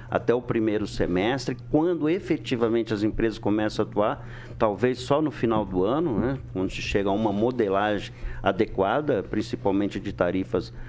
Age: 50-69